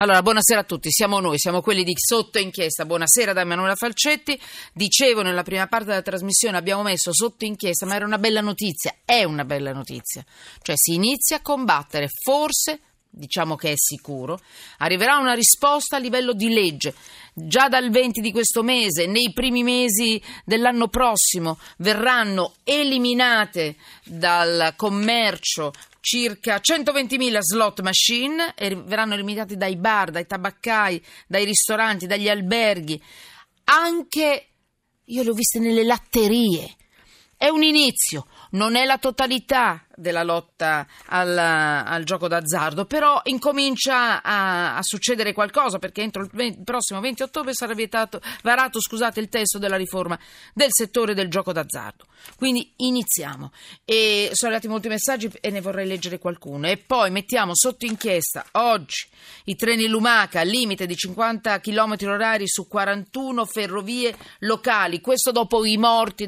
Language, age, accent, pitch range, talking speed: Italian, 40-59, native, 185-240 Hz, 145 wpm